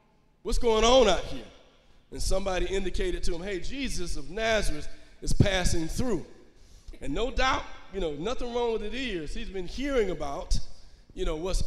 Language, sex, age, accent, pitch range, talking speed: English, male, 40-59, American, 155-230 Hz, 175 wpm